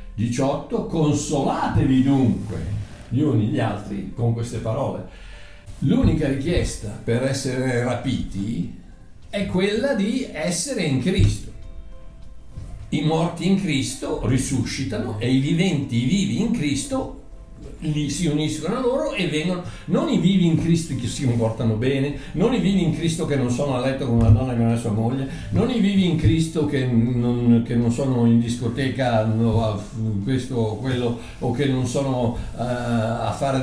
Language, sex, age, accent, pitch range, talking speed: Italian, male, 60-79, native, 115-160 Hz, 155 wpm